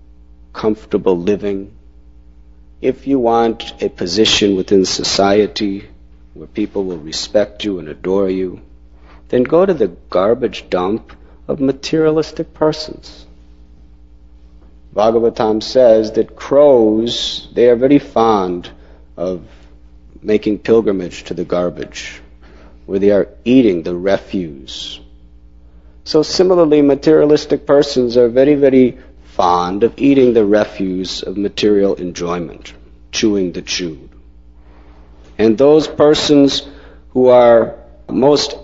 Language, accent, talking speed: English, American, 105 wpm